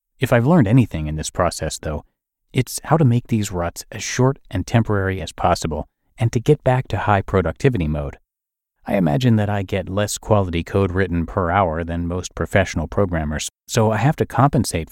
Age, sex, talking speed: 30-49, male, 190 wpm